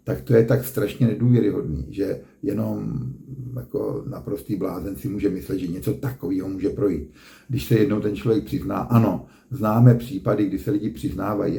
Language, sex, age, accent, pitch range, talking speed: Czech, male, 50-69, native, 95-125 Hz, 165 wpm